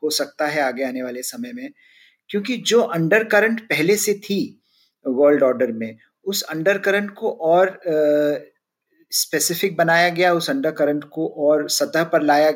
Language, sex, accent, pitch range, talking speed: Hindi, male, native, 145-180 Hz, 155 wpm